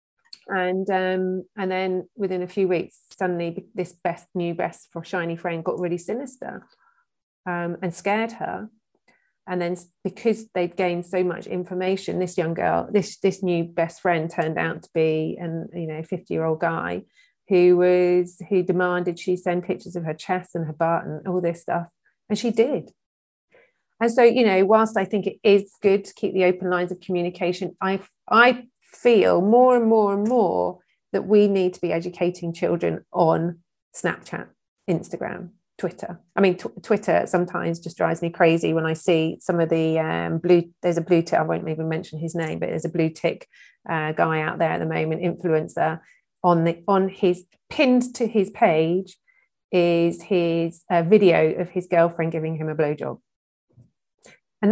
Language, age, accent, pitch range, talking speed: English, 30-49, British, 170-195 Hz, 180 wpm